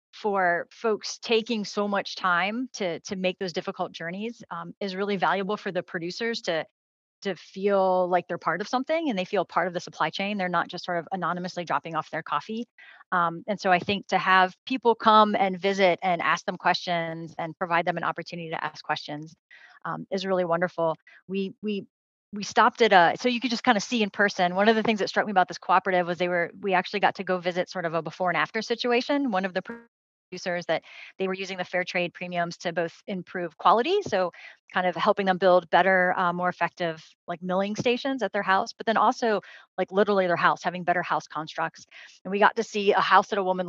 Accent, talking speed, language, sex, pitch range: American, 225 wpm, English, female, 170-200 Hz